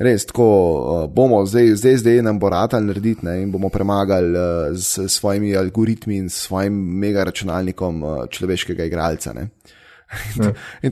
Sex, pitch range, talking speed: male, 90-120 Hz, 130 wpm